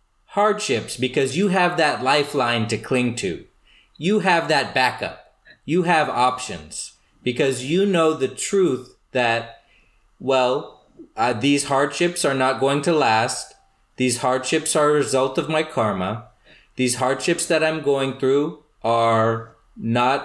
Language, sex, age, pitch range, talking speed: English, male, 30-49, 120-160 Hz, 140 wpm